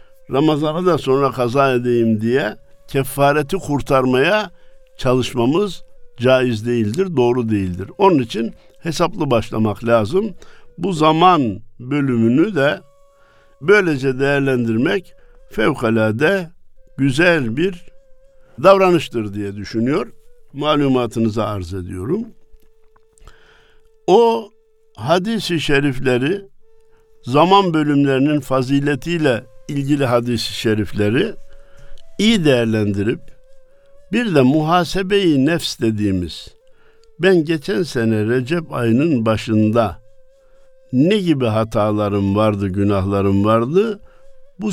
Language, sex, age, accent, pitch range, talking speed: Turkish, male, 60-79, native, 115-185 Hz, 85 wpm